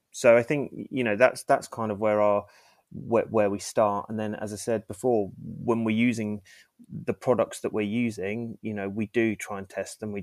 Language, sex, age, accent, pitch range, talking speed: English, male, 20-39, British, 100-115 Hz, 225 wpm